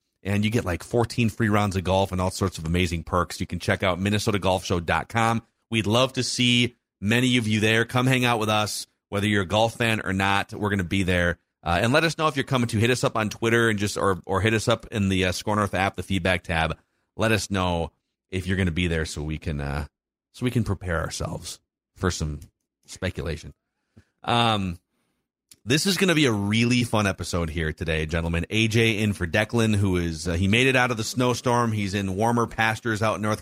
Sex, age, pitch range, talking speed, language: male, 30-49, 95-120 Hz, 235 wpm, English